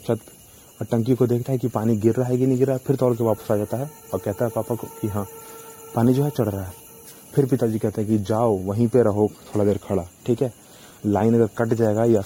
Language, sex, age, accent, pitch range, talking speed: Hindi, male, 30-49, native, 105-125 Hz, 265 wpm